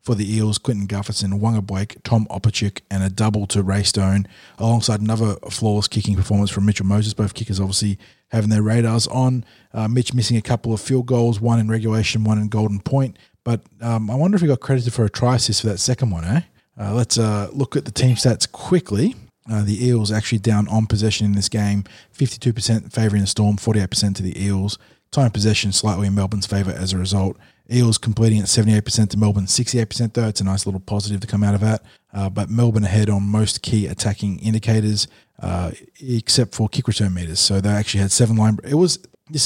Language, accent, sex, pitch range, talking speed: English, Australian, male, 100-115 Hz, 215 wpm